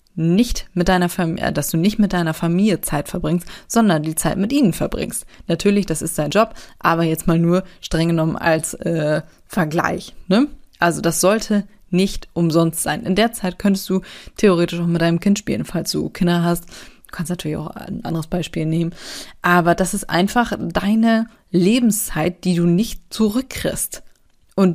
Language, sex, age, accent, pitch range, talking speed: German, female, 20-39, German, 165-205 Hz, 165 wpm